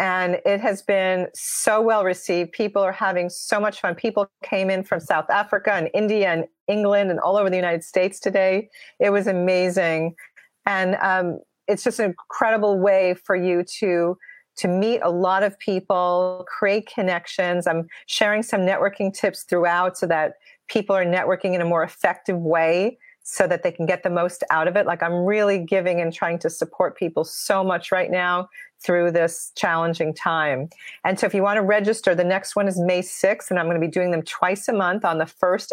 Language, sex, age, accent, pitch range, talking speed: English, female, 40-59, American, 170-200 Hz, 200 wpm